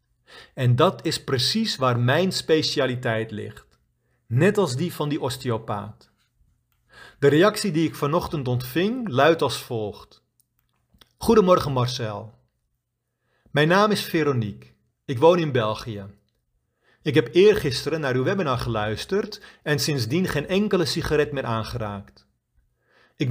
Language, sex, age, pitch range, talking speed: Dutch, male, 40-59, 120-160 Hz, 125 wpm